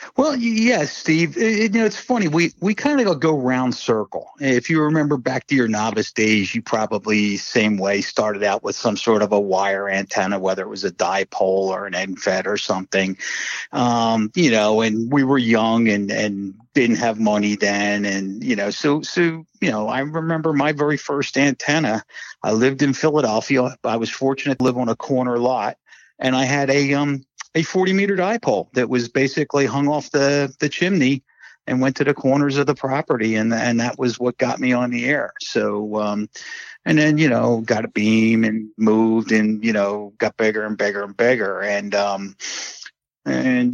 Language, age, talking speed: English, 50-69, 195 wpm